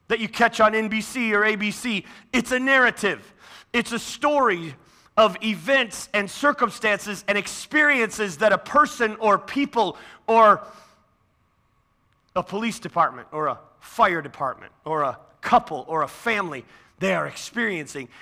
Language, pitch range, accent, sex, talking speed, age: English, 155-230 Hz, American, male, 135 wpm, 30-49